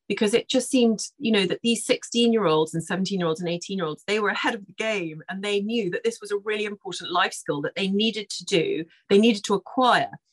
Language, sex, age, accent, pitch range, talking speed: English, female, 40-59, British, 175-215 Hz, 225 wpm